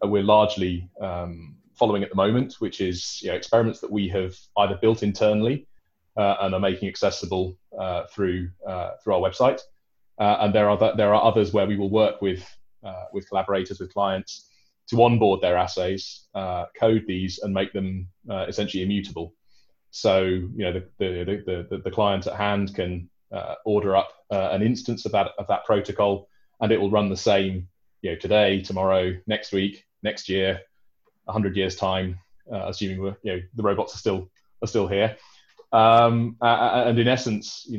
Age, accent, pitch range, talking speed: 20-39, British, 95-110 Hz, 185 wpm